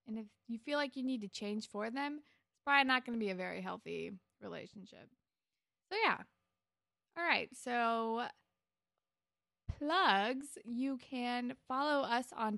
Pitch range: 205-260 Hz